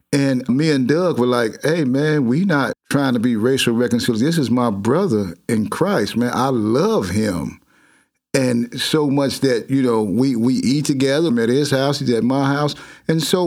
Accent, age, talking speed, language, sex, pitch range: American, 50-69, 200 wpm, English, male, 115-140 Hz